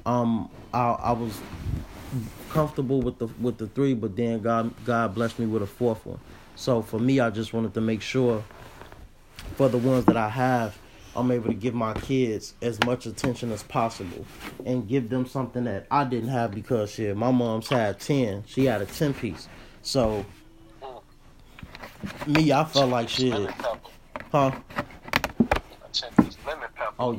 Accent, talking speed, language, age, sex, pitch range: American, 160 wpm, English, 30-49, male, 110-130 Hz